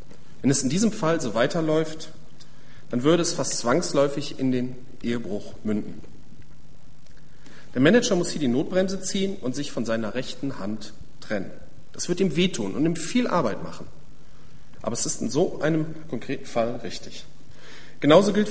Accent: German